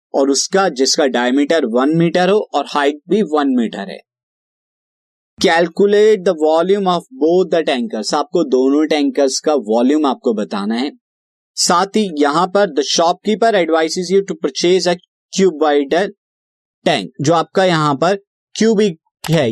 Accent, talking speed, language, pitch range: native, 140 wpm, Hindi, 135-185 Hz